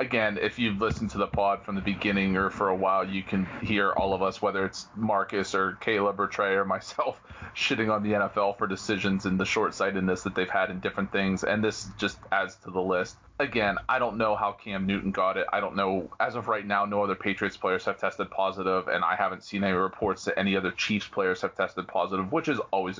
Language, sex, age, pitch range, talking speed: English, male, 30-49, 95-105 Hz, 235 wpm